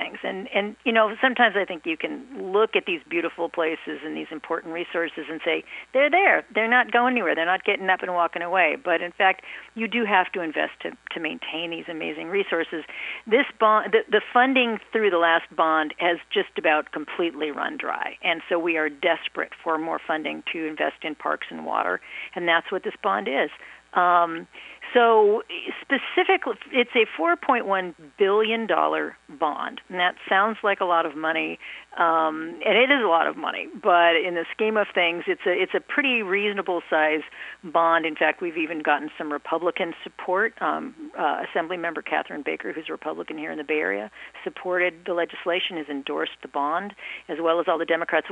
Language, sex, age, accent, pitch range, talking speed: English, female, 50-69, American, 165-225 Hz, 195 wpm